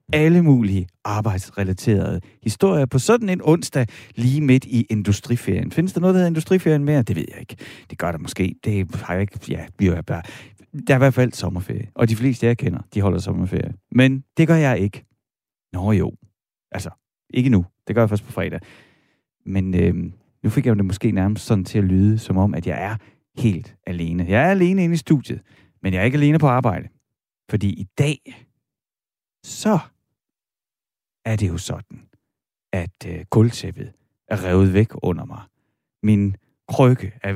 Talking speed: 180 wpm